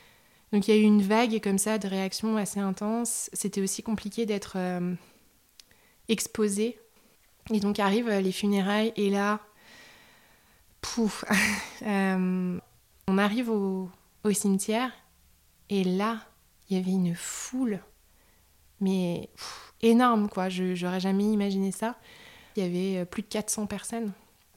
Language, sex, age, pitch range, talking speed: French, female, 20-39, 185-215 Hz, 135 wpm